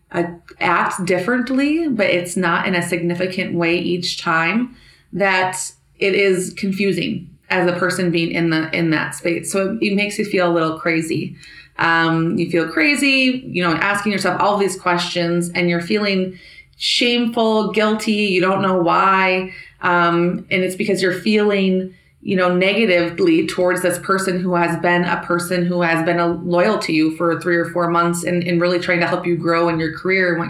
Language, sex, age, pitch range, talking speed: English, female, 30-49, 170-195 Hz, 185 wpm